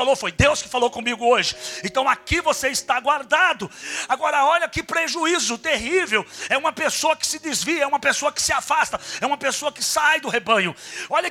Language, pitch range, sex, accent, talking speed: Portuguese, 240-305 Hz, male, Brazilian, 190 wpm